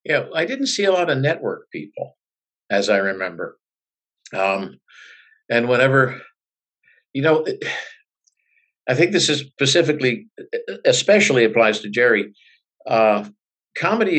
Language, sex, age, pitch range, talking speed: English, male, 50-69, 115-185 Hz, 120 wpm